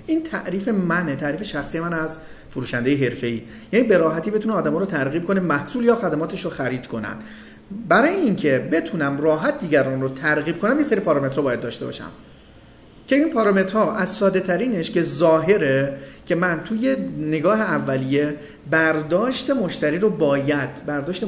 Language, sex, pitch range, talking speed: Persian, male, 135-195 Hz, 160 wpm